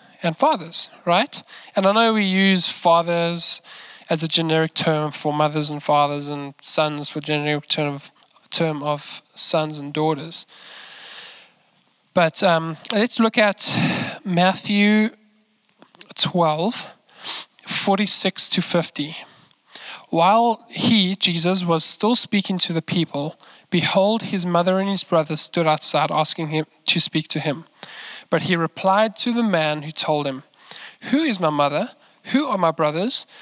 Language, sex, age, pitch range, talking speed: English, male, 10-29, 155-200 Hz, 140 wpm